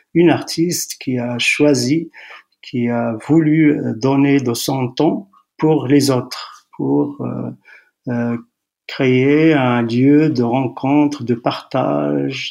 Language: French